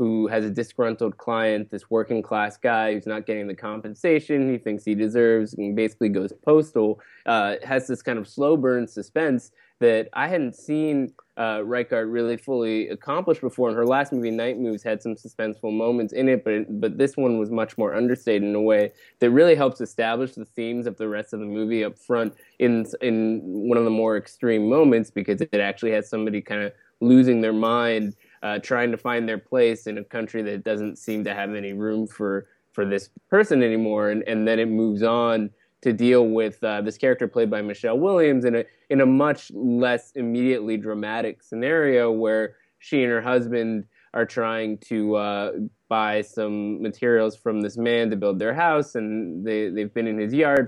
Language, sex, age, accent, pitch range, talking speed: English, male, 20-39, American, 105-120 Hz, 200 wpm